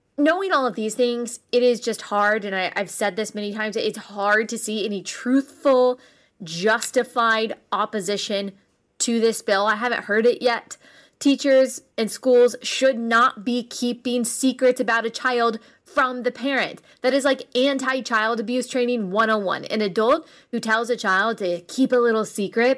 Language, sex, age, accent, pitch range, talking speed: English, female, 20-39, American, 220-270 Hz, 165 wpm